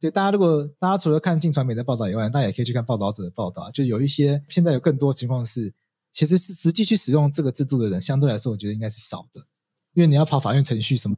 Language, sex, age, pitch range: Chinese, male, 20-39, 110-150 Hz